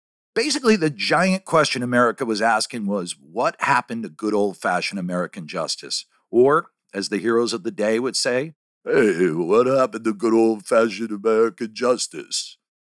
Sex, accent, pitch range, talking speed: male, American, 105-135 Hz, 150 wpm